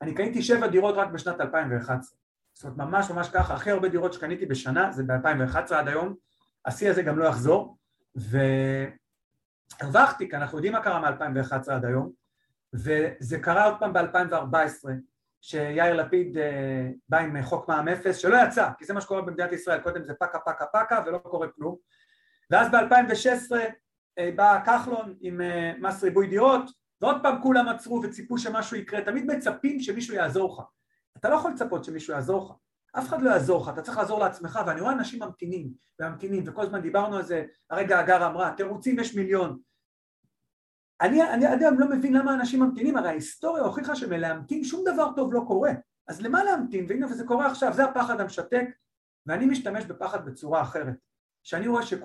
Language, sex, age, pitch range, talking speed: Hebrew, male, 40-59, 160-235 Hz, 165 wpm